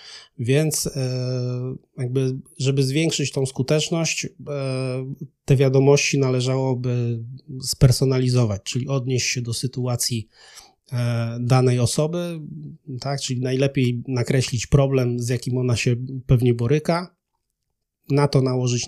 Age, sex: 30-49, male